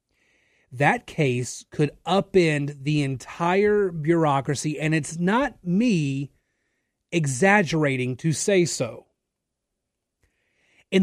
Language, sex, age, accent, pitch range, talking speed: English, male, 30-49, American, 145-195 Hz, 85 wpm